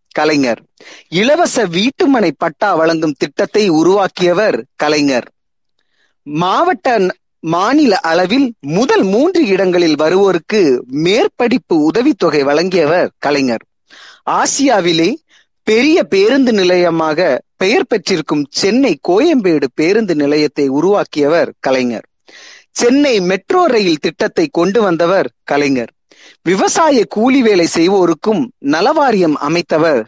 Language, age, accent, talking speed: Tamil, 30-49, native, 90 wpm